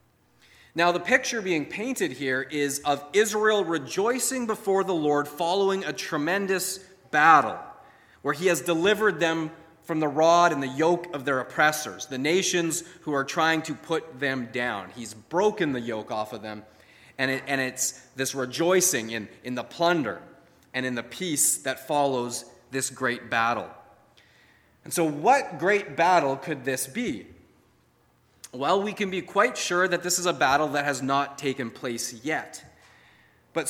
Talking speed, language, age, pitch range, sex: 160 wpm, English, 30-49, 135-185 Hz, male